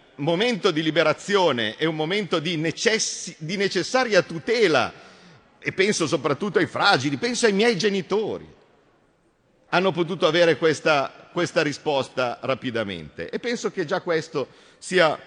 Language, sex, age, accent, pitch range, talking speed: Italian, male, 50-69, native, 155-230 Hz, 130 wpm